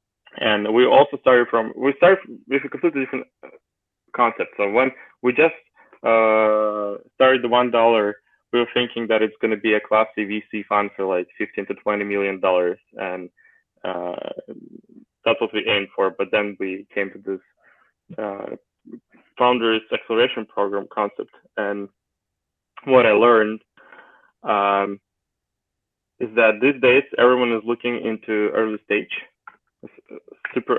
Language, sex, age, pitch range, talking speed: English, male, 20-39, 100-125 Hz, 145 wpm